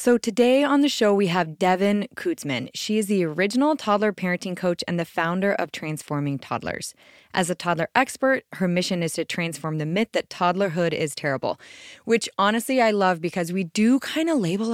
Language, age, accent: English, 20-39, American